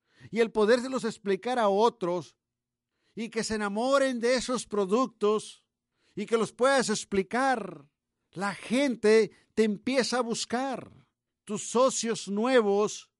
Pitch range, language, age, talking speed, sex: 125-195 Hz, Spanish, 50-69, 130 wpm, male